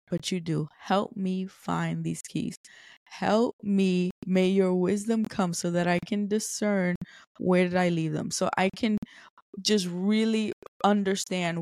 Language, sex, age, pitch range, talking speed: English, female, 20-39, 175-200 Hz, 155 wpm